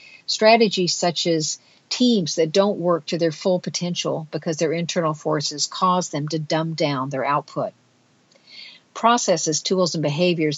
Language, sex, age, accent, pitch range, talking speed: English, female, 50-69, American, 150-195 Hz, 145 wpm